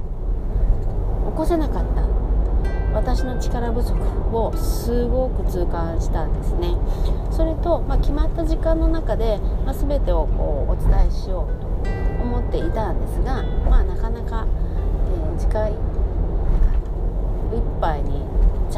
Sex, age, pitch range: female, 40-59, 85-90 Hz